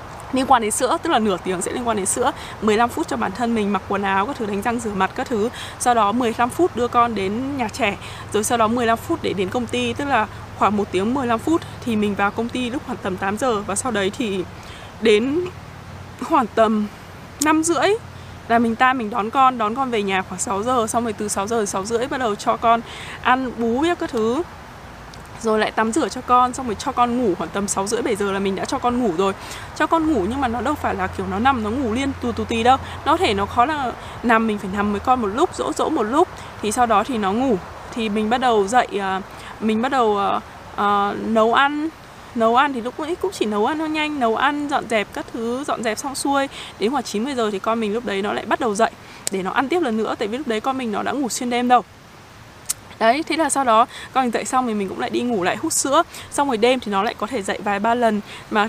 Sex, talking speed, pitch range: female, 270 wpm, 210-265 Hz